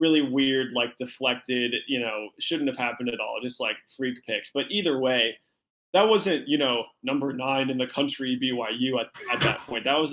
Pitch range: 125-165 Hz